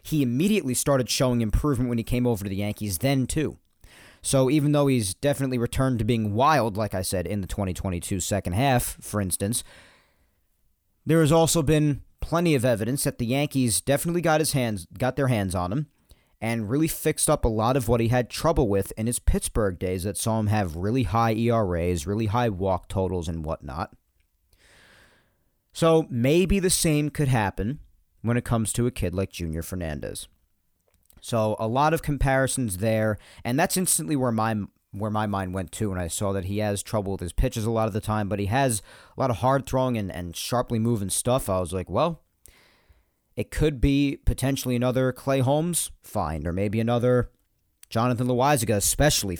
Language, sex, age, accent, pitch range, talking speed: English, male, 40-59, American, 95-130 Hz, 190 wpm